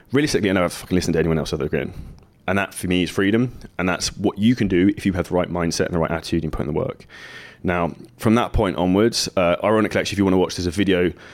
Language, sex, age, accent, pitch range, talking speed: English, male, 20-39, British, 85-100 Hz, 295 wpm